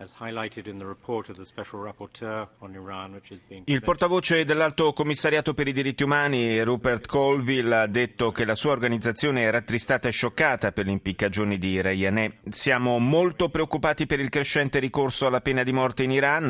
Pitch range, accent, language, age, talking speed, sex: 105-130 Hz, native, Italian, 30-49, 140 wpm, male